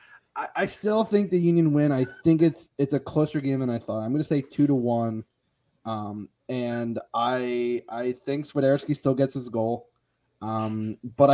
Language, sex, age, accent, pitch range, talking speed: English, male, 20-39, American, 120-155 Hz, 185 wpm